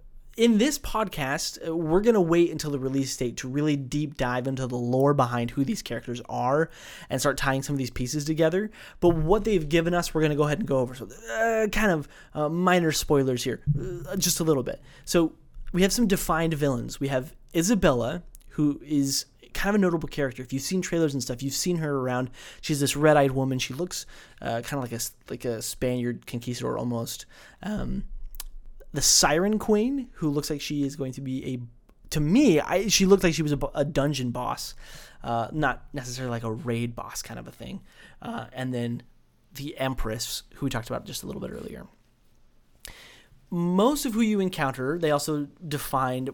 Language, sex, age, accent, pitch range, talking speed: English, male, 20-39, American, 130-170 Hz, 200 wpm